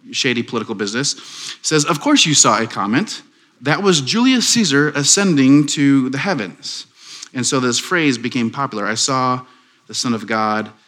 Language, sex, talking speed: English, male, 165 wpm